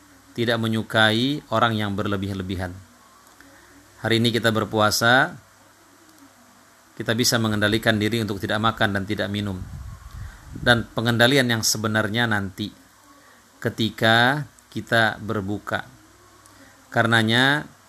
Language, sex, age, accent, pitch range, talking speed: Indonesian, male, 40-59, native, 105-120 Hz, 95 wpm